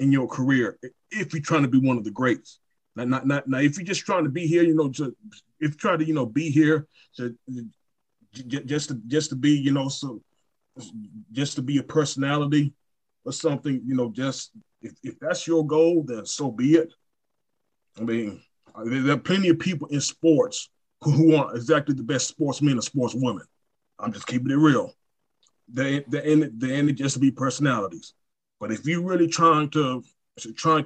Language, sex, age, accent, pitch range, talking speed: English, male, 30-49, American, 135-160 Hz, 205 wpm